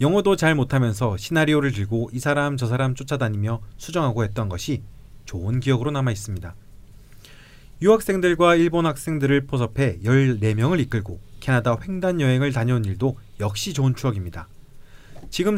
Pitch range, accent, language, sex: 110-150 Hz, native, Korean, male